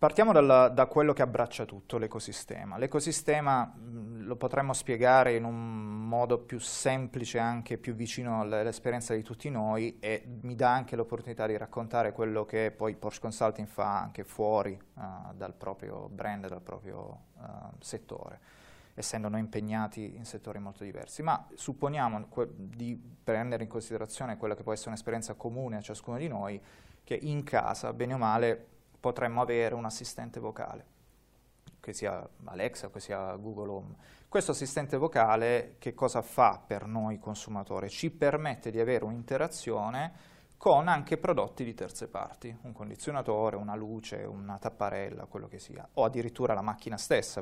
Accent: native